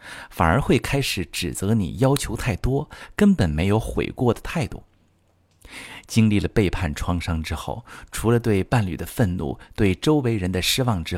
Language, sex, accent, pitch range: Chinese, male, native, 90-120 Hz